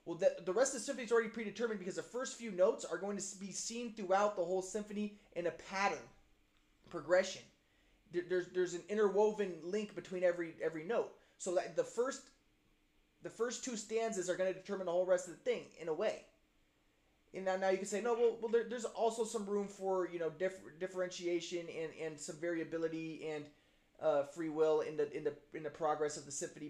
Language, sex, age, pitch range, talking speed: English, male, 20-39, 155-205 Hz, 215 wpm